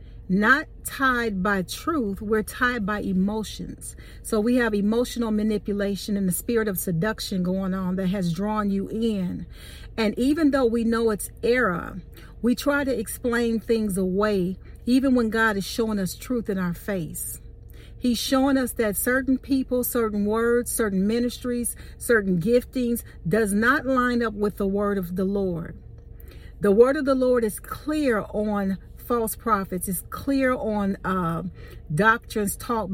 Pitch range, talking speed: 200-245 Hz, 155 wpm